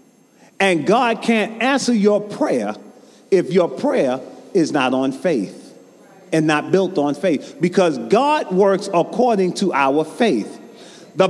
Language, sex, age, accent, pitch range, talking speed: English, male, 40-59, American, 185-255 Hz, 140 wpm